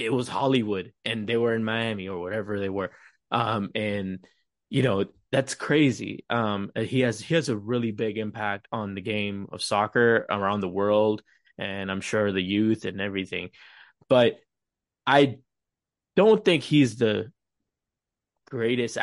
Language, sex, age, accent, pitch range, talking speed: English, male, 20-39, American, 105-130 Hz, 155 wpm